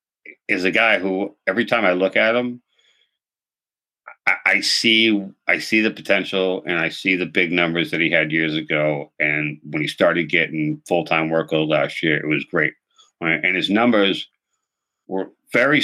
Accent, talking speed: American, 180 wpm